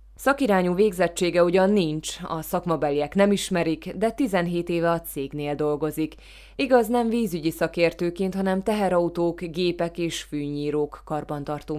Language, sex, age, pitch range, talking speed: Hungarian, female, 20-39, 145-185 Hz, 120 wpm